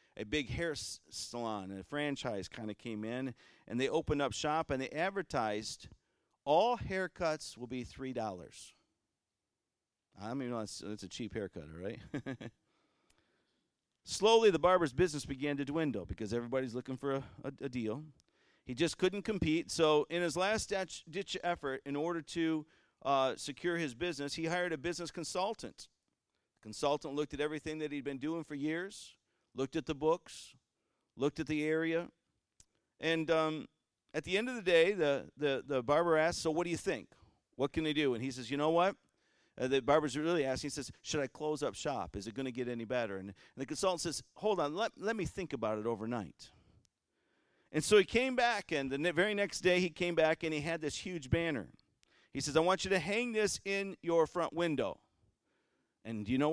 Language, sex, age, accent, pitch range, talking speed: English, male, 50-69, American, 130-170 Hz, 195 wpm